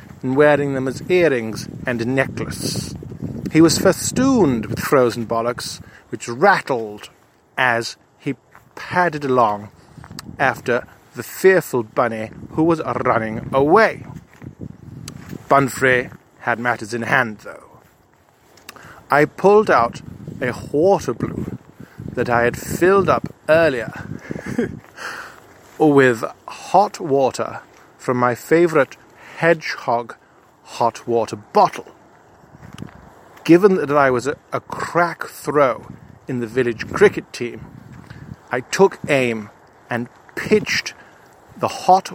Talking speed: 110 wpm